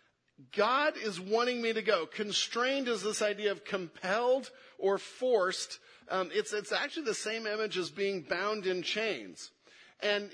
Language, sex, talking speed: English, male, 155 wpm